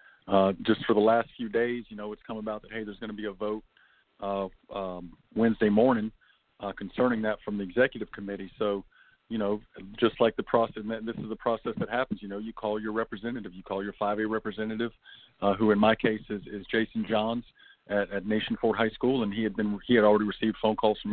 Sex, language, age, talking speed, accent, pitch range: male, English, 40-59, 235 wpm, American, 105-115 Hz